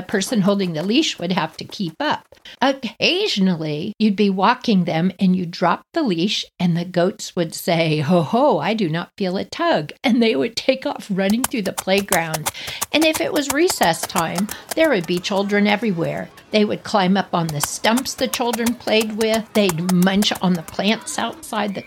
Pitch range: 185-265 Hz